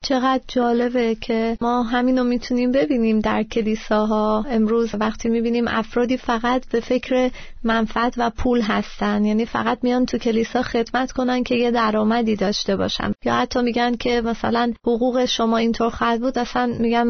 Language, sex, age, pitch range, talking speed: Persian, female, 30-49, 220-245 Hz, 155 wpm